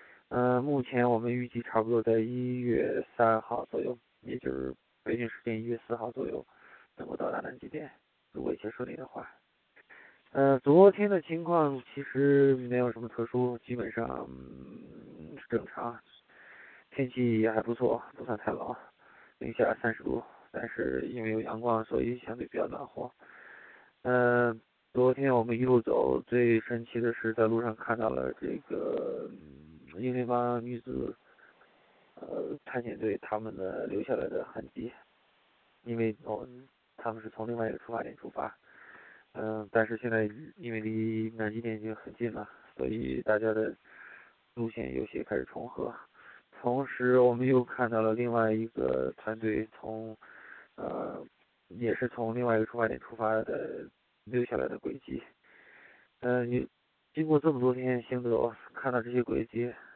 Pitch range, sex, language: 110-125 Hz, male, English